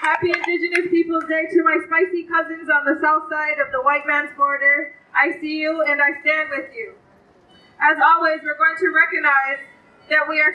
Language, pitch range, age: English, 290-340 Hz, 20-39